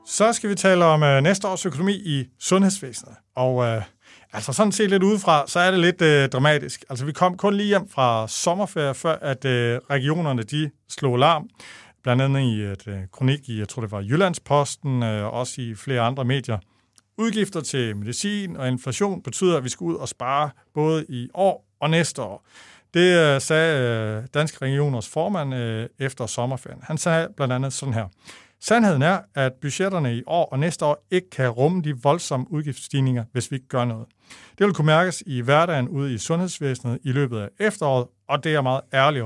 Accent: native